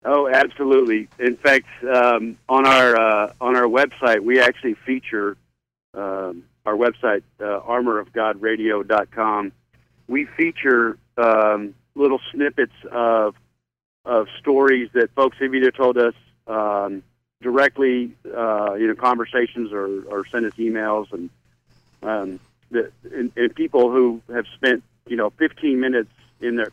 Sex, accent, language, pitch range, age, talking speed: male, American, English, 100-125 Hz, 50-69, 135 wpm